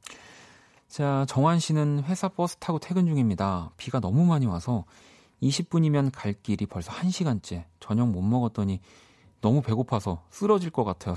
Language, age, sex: Korean, 40-59, male